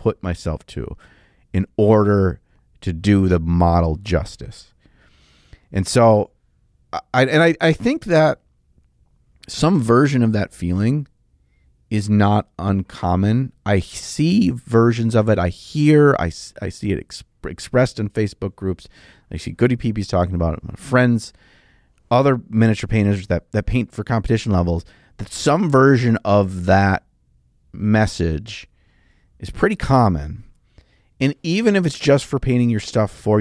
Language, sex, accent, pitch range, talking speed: English, male, American, 85-115 Hz, 140 wpm